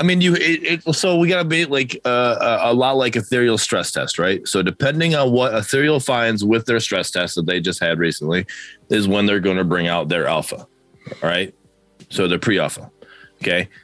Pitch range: 90-130 Hz